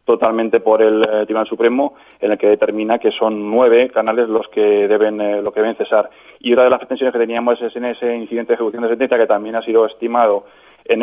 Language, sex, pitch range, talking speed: Spanish, male, 110-120 Hz, 230 wpm